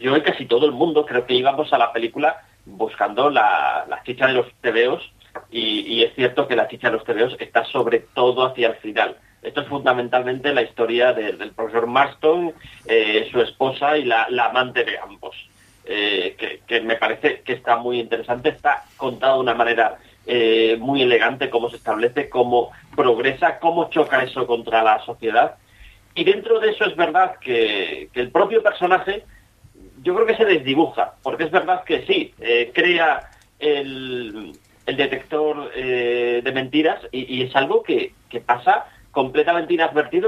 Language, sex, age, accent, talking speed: Spanish, male, 40-59, Spanish, 175 wpm